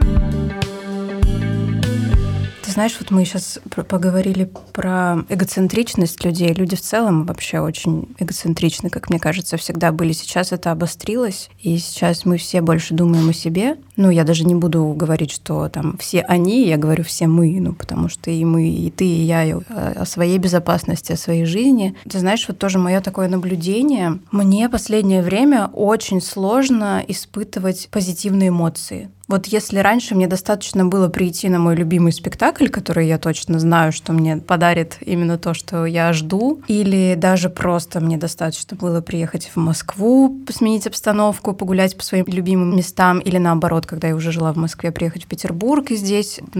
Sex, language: female, Russian